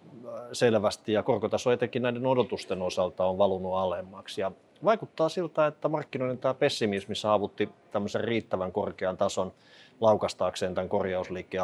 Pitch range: 95-120 Hz